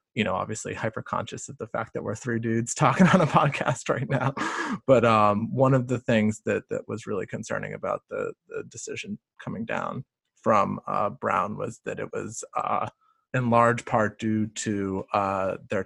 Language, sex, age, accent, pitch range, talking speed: English, male, 20-39, American, 105-145 Hz, 190 wpm